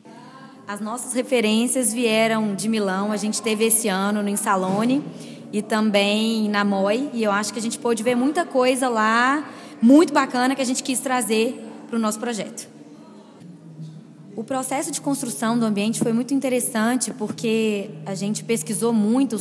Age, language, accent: 20-39, Portuguese, Brazilian